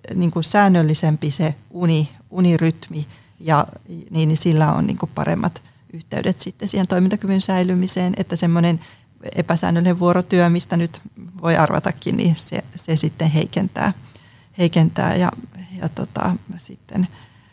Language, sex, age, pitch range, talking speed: Finnish, female, 30-49, 155-180 Hz, 110 wpm